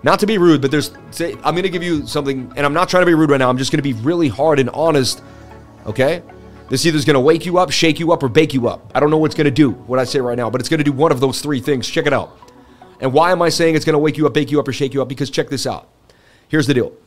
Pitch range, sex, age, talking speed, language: 120-150 Hz, male, 30-49, 345 wpm, English